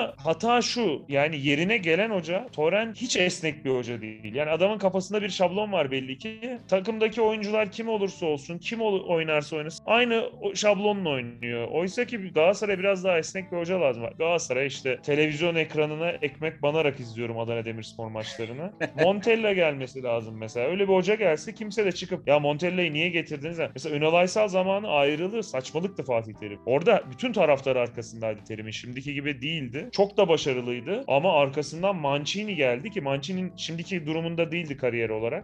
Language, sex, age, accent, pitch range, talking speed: Turkish, male, 30-49, native, 140-200 Hz, 165 wpm